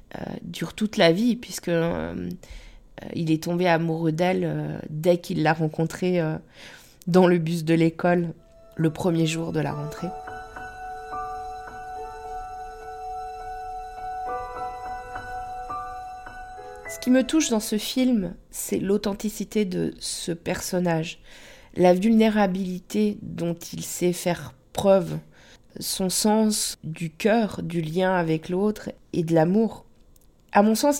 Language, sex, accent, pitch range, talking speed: French, female, French, 170-215 Hz, 115 wpm